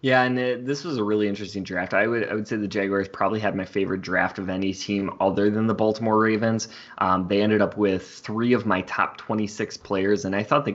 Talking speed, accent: 245 wpm, American